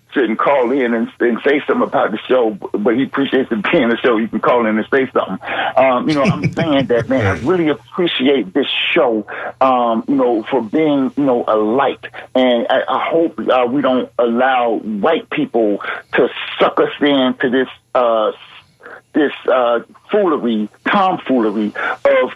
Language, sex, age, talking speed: English, male, 50-69, 185 wpm